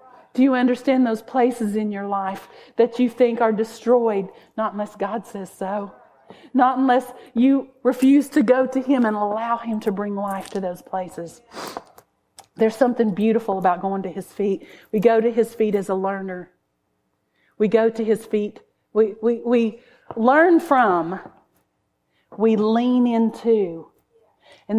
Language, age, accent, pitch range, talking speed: English, 40-59, American, 195-245 Hz, 155 wpm